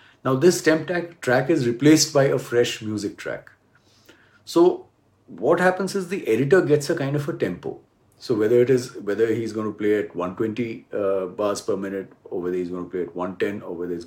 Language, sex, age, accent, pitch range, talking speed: English, male, 40-59, Indian, 110-155 Hz, 210 wpm